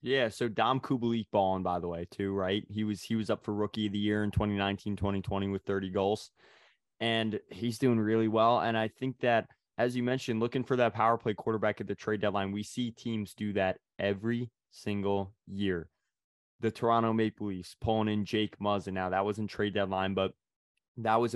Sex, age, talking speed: male, 20-39, 200 wpm